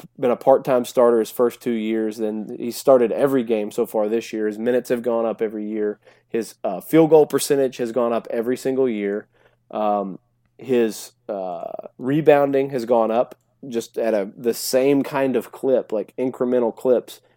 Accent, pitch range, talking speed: American, 110-130 Hz, 185 wpm